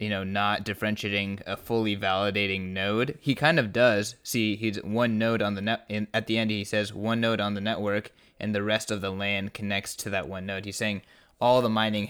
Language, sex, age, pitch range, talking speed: English, male, 20-39, 100-110 Hz, 225 wpm